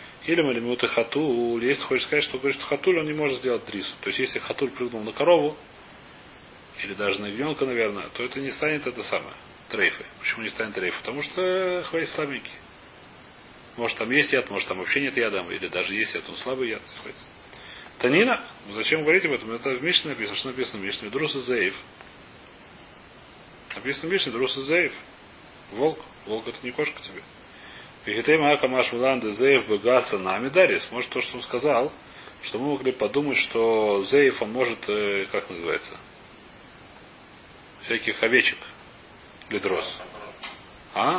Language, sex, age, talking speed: Russian, male, 30-49, 160 wpm